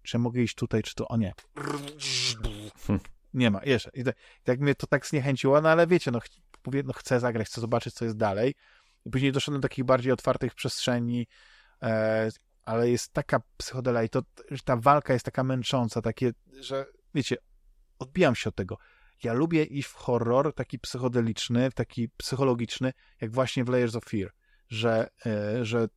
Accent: native